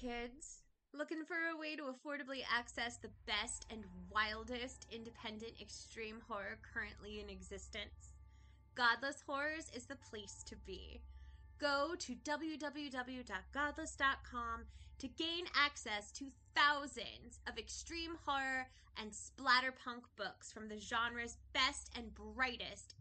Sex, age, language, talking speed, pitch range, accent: female, 20-39, English, 115 wpm, 225-295 Hz, American